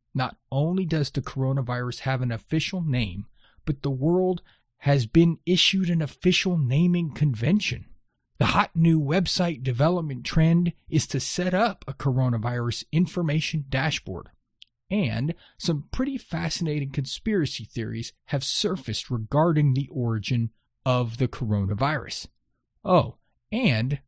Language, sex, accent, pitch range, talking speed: English, male, American, 120-175 Hz, 120 wpm